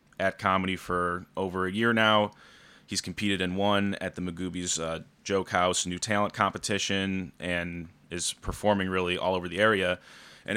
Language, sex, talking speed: English, male, 165 wpm